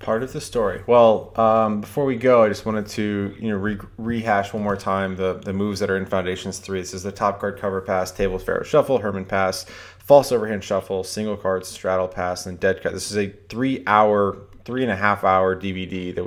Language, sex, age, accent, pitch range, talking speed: English, male, 20-39, American, 95-100 Hz, 205 wpm